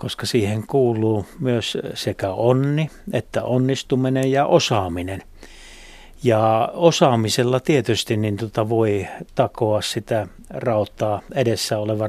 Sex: male